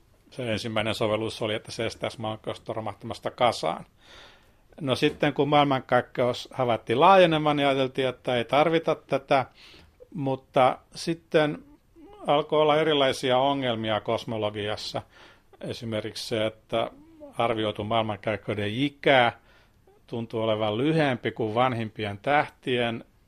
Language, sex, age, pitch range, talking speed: Finnish, male, 60-79, 110-135 Hz, 105 wpm